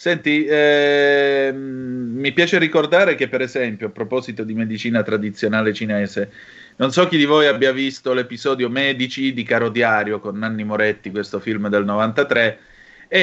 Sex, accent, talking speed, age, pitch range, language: male, native, 150 wpm, 30-49, 110-140 Hz, Italian